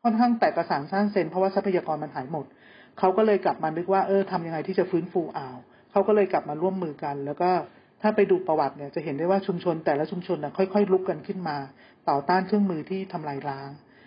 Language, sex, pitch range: Thai, male, 165-205 Hz